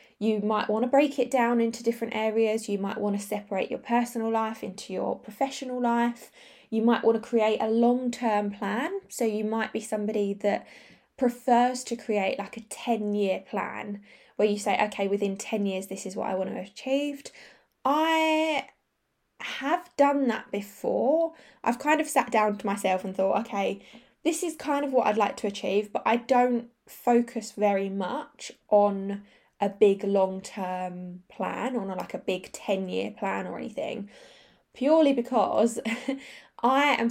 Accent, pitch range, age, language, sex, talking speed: British, 205-250 Hz, 10-29, English, female, 175 wpm